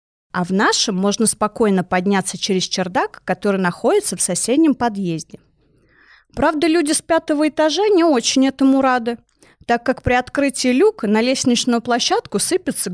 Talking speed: 145 wpm